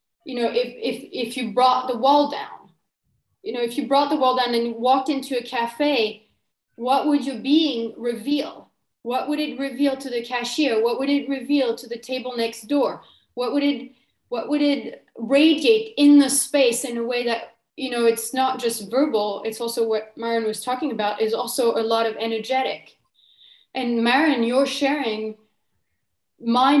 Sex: female